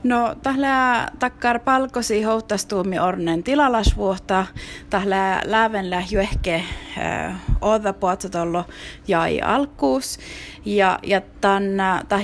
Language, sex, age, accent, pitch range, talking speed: Finnish, female, 20-39, native, 180-245 Hz, 65 wpm